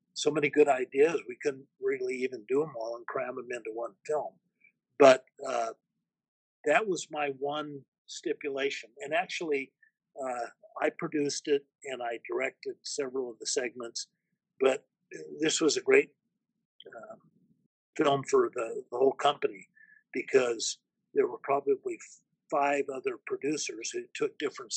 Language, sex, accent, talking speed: English, male, American, 145 wpm